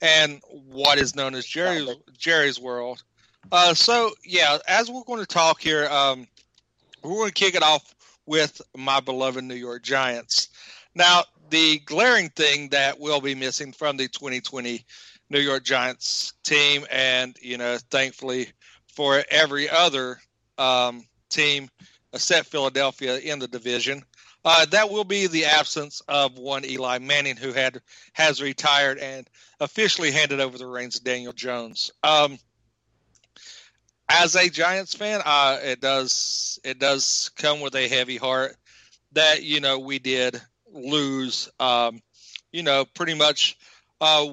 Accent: American